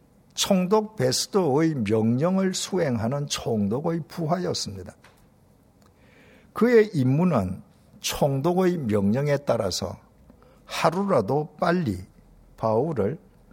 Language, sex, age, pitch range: Korean, male, 50-69, 110-175 Hz